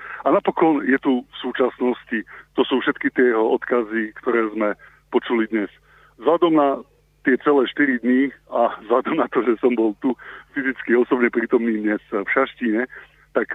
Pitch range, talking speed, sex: 110-130 Hz, 170 wpm, male